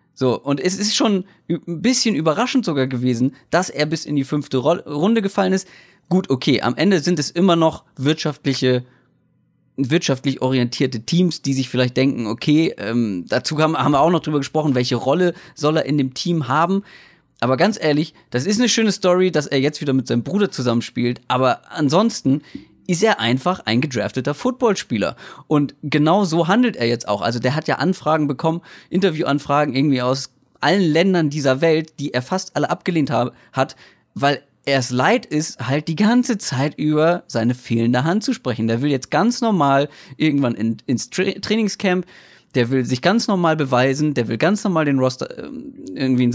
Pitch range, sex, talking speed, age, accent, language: 130-175 Hz, male, 185 wpm, 30-49, German, German